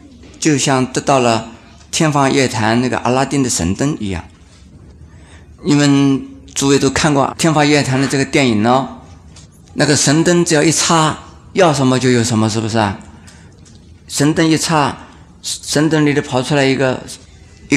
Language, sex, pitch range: Chinese, male, 90-140 Hz